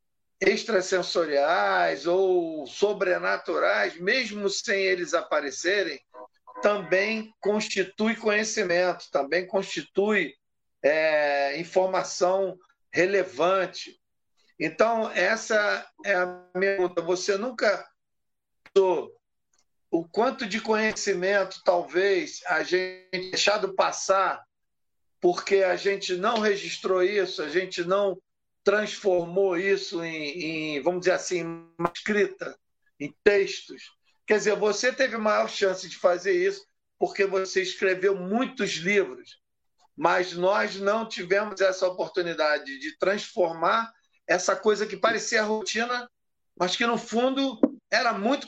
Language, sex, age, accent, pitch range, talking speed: Portuguese, male, 50-69, Brazilian, 185-225 Hz, 105 wpm